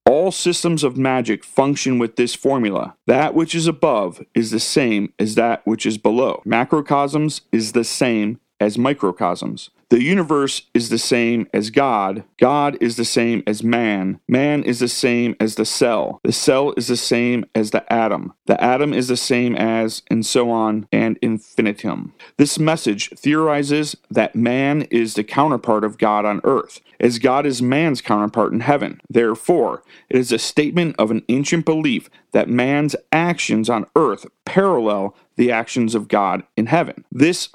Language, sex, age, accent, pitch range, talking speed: English, male, 40-59, American, 115-145 Hz, 170 wpm